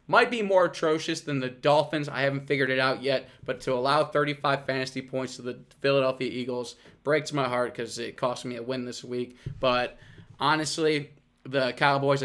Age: 20-39